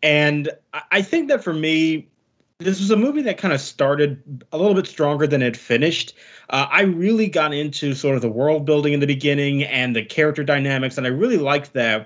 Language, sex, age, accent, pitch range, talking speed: English, male, 30-49, American, 135-175 Hz, 215 wpm